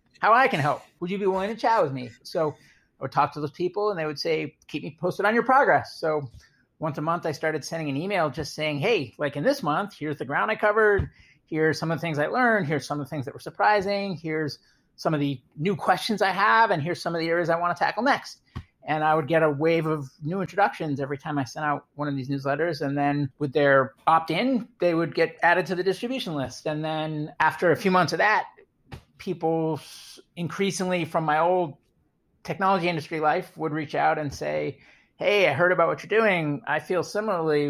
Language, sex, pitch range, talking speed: English, male, 145-185 Hz, 230 wpm